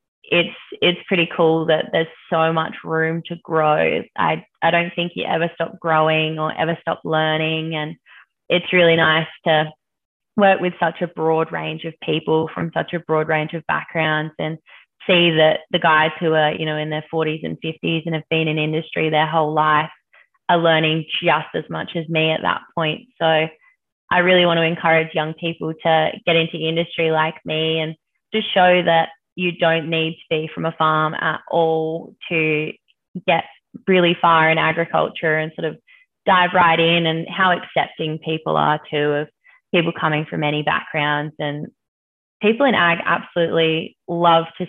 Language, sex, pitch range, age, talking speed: English, female, 155-175 Hz, 20-39, 180 wpm